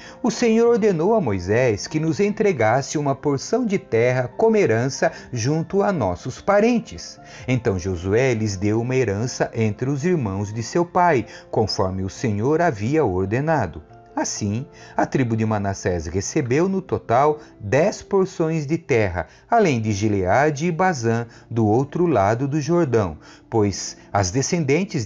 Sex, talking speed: male, 145 wpm